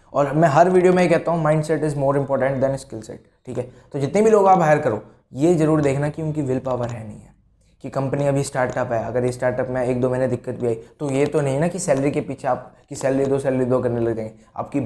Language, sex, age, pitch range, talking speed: Hindi, male, 20-39, 125-155 Hz, 265 wpm